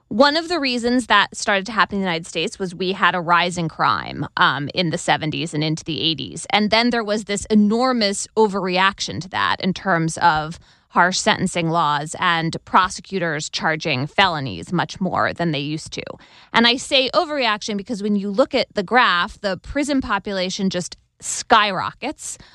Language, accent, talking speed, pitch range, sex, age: English, American, 180 wpm, 180-240 Hz, female, 20-39